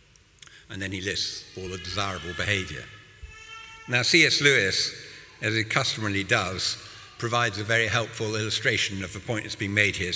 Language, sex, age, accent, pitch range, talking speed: English, male, 60-79, British, 110-140 Hz, 160 wpm